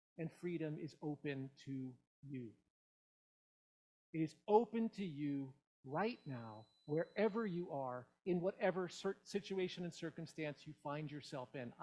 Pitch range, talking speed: 145-180 Hz, 125 wpm